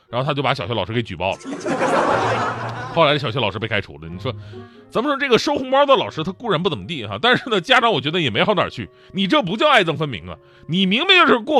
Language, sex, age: Chinese, male, 30-49